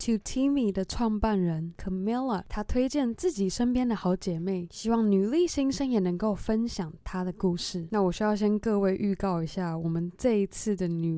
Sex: female